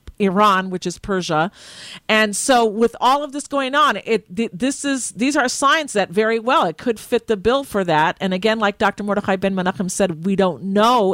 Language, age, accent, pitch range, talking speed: English, 50-69, American, 200-250 Hz, 215 wpm